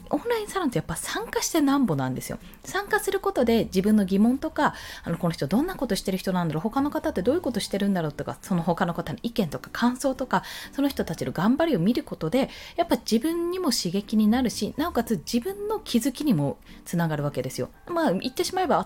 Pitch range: 185-295 Hz